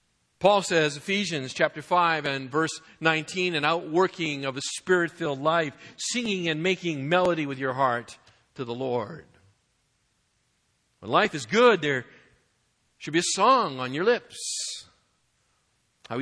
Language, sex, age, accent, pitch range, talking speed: English, male, 50-69, American, 145-195 Hz, 135 wpm